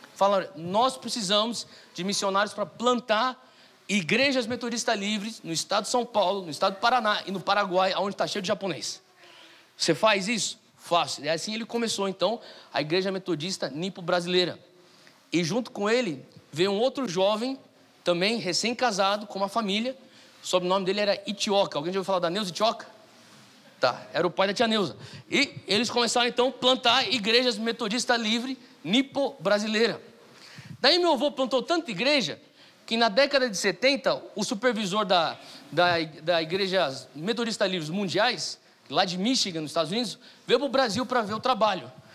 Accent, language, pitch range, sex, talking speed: Brazilian, Portuguese, 185-245 Hz, male, 165 wpm